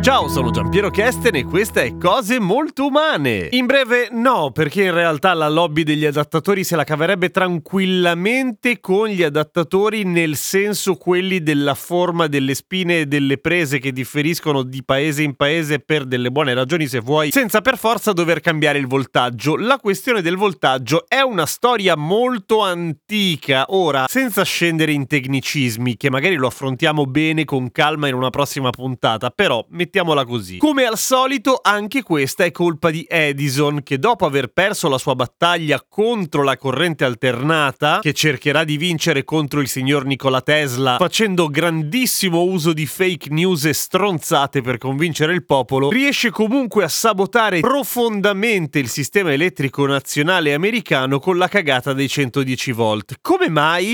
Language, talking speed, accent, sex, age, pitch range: Italian, 160 wpm, native, male, 30-49, 140-200 Hz